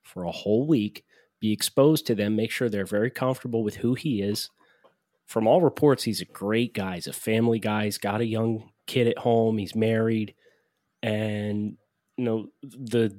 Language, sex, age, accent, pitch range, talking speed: English, male, 30-49, American, 100-120 Hz, 185 wpm